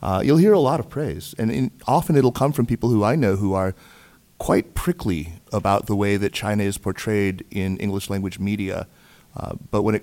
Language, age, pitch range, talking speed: English, 30-49, 95-130 Hz, 210 wpm